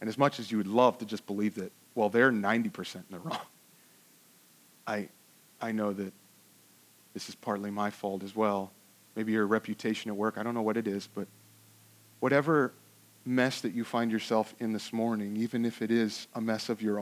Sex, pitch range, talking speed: male, 110-155 Hz, 200 wpm